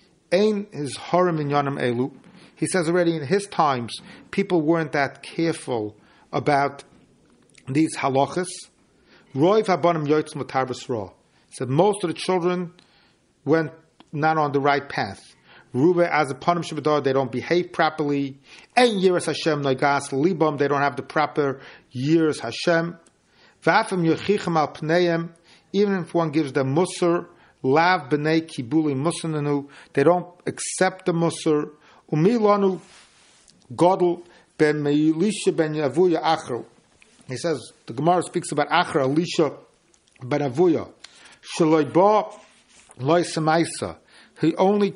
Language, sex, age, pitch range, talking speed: English, male, 40-59, 145-175 Hz, 100 wpm